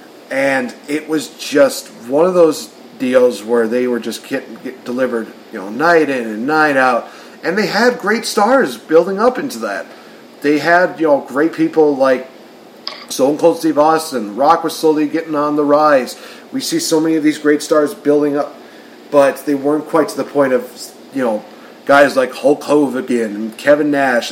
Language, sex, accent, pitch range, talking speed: English, male, American, 130-170 Hz, 190 wpm